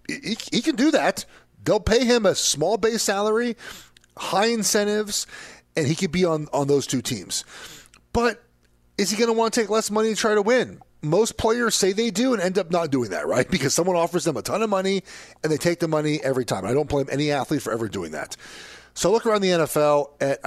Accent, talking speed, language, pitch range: American, 230 wpm, English, 120-175 Hz